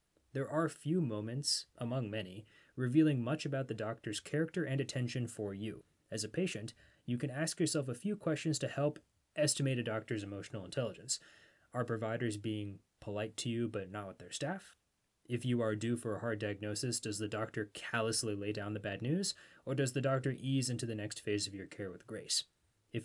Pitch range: 105-135 Hz